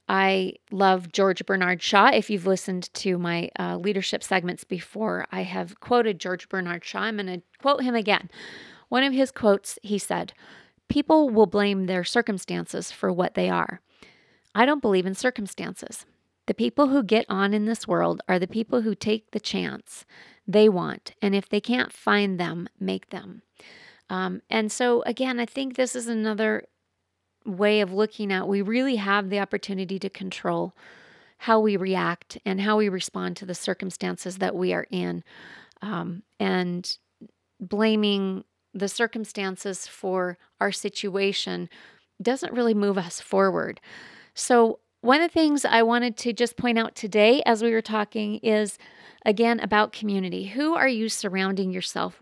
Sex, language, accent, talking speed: female, English, American, 165 wpm